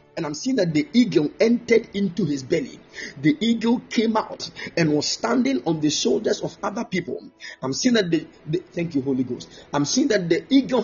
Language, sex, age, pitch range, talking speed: English, male, 50-69, 170-260 Hz, 205 wpm